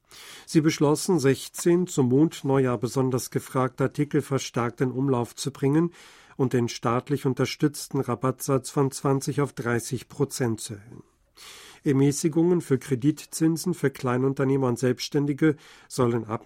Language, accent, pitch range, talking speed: German, German, 125-145 Hz, 125 wpm